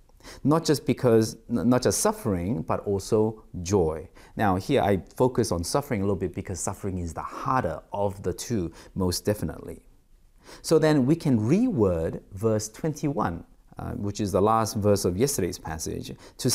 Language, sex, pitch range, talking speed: English, male, 95-140 Hz, 165 wpm